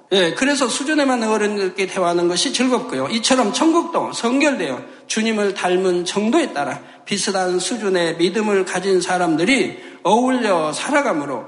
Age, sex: 60-79, male